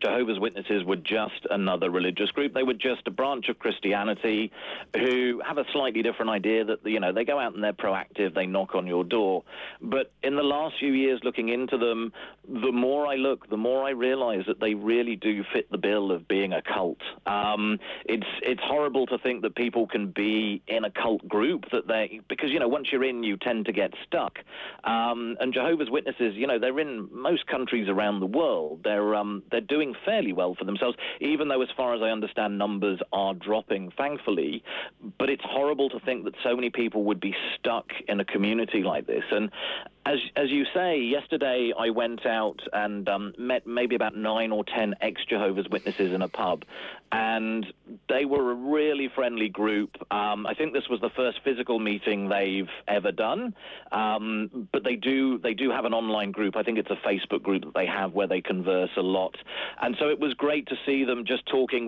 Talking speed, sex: 205 wpm, male